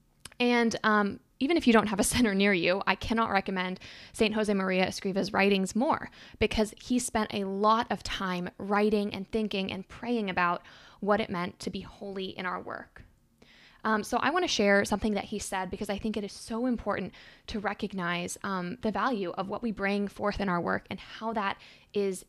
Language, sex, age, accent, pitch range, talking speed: English, female, 20-39, American, 190-225 Hz, 205 wpm